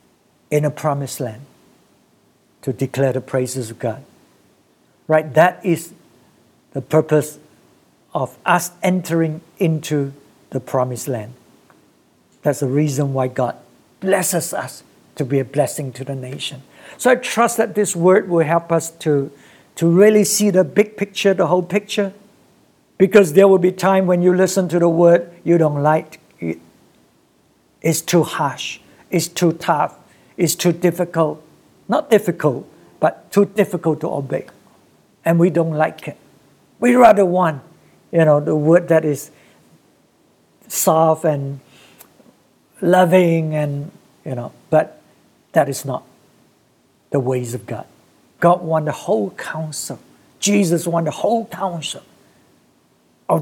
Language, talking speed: English, 140 wpm